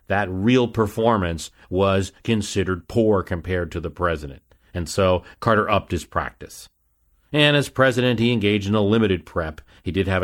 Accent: American